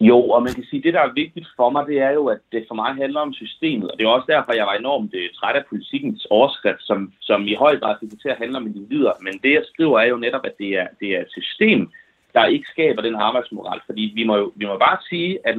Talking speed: 280 wpm